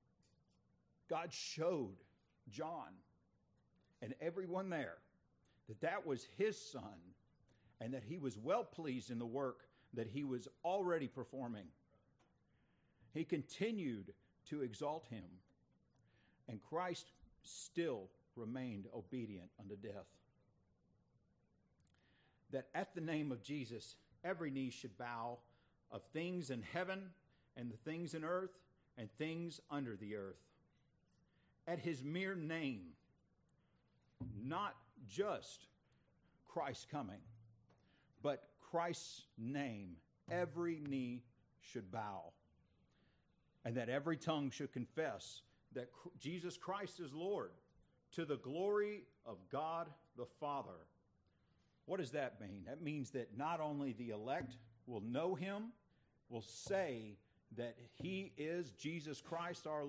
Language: English